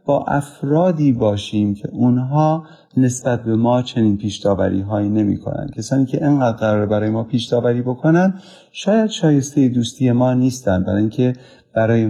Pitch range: 105-140 Hz